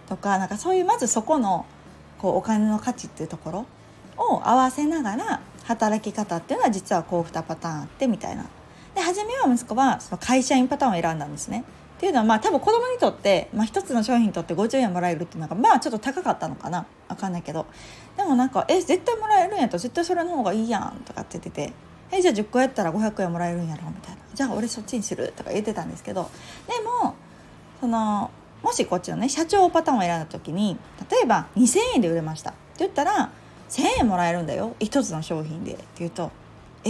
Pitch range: 180-275 Hz